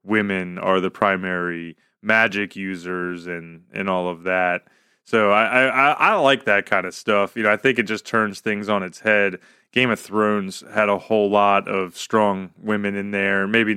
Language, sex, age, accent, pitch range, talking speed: English, male, 30-49, American, 95-125 Hz, 190 wpm